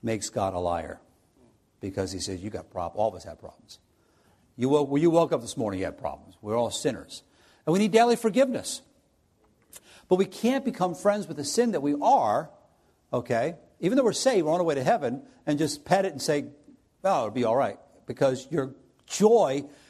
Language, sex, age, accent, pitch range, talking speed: English, male, 50-69, American, 125-185 Hz, 200 wpm